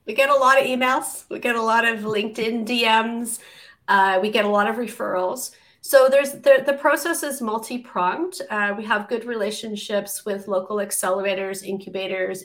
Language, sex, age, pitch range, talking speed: English, female, 30-49, 205-270 Hz, 175 wpm